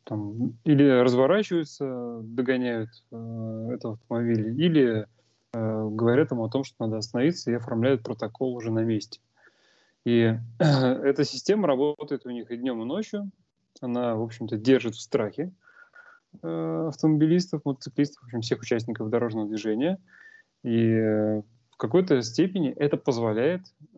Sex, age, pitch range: male, 20-39, 110-140 Hz